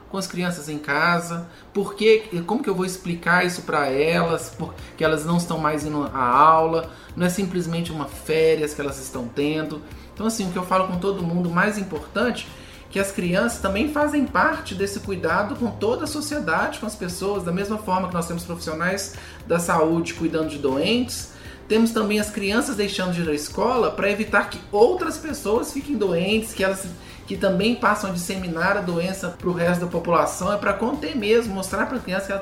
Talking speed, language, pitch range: 200 wpm, Portuguese, 175-215 Hz